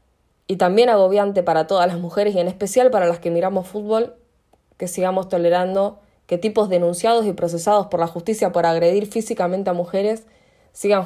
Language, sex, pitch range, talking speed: Spanish, female, 170-205 Hz, 175 wpm